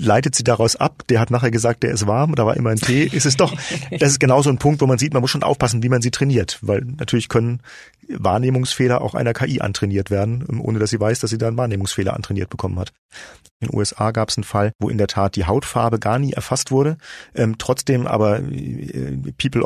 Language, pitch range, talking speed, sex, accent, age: German, 105-130 Hz, 240 wpm, male, German, 40-59